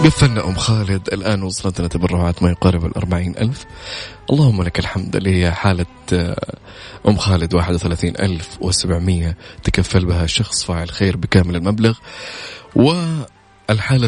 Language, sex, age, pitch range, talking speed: Arabic, male, 20-39, 90-115 Hz, 125 wpm